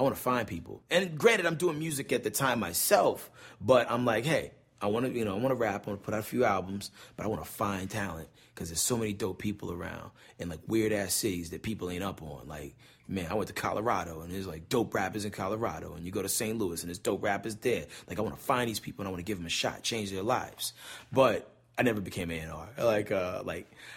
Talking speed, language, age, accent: 270 wpm, English, 30-49, American